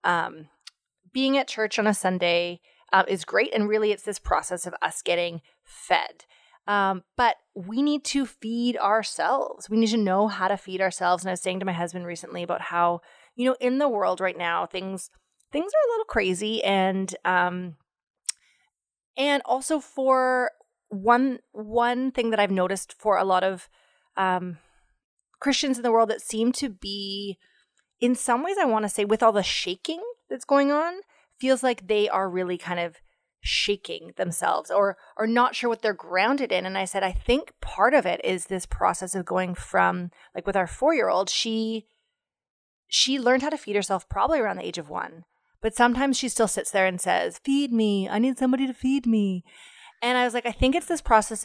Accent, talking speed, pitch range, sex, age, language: American, 195 wpm, 185-260 Hz, female, 30-49, English